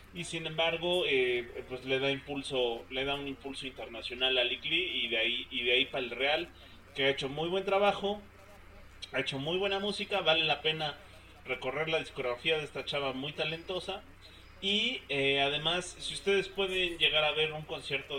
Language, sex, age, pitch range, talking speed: Spanish, male, 30-49, 130-160 Hz, 180 wpm